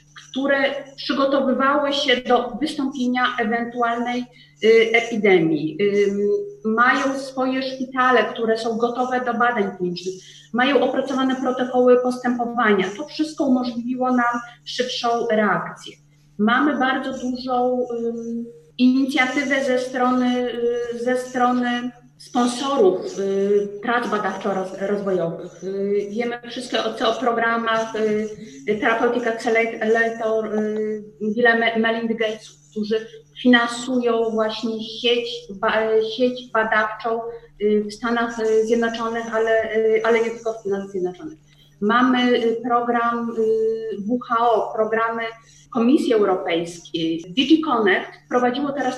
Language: Polish